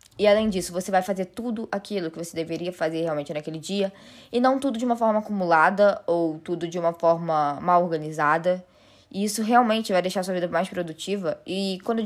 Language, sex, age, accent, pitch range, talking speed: Portuguese, female, 10-29, Brazilian, 165-195 Hz, 205 wpm